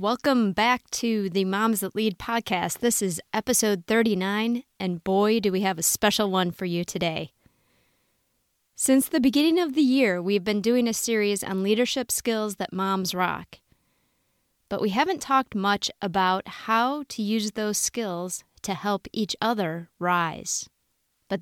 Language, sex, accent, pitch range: English, female, American, 190-235 Hz